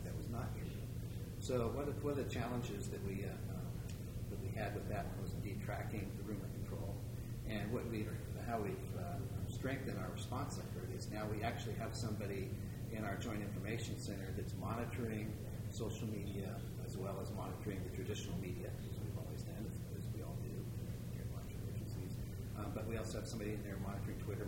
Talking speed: 185 wpm